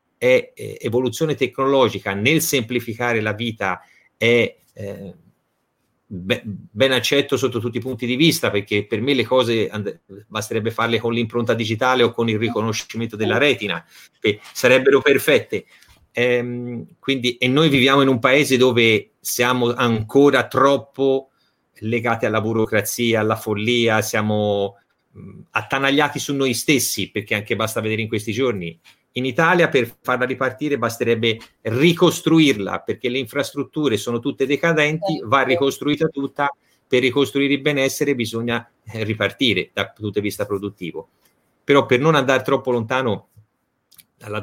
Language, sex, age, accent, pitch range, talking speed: Italian, male, 30-49, native, 110-135 Hz, 135 wpm